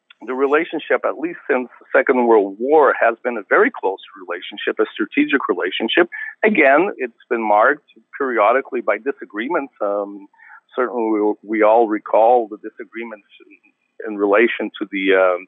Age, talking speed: 50-69, 150 wpm